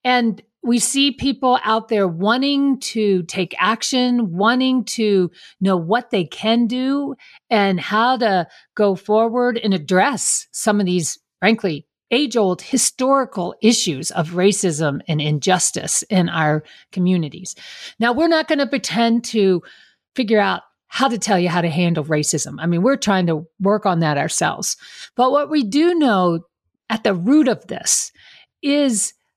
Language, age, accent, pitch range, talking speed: English, 50-69, American, 185-245 Hz, 155 wpm